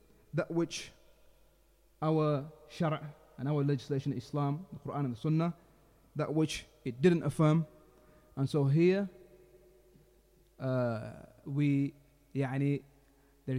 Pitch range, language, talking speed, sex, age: 130-155 Hz, English, 105 wpm, male, 30-49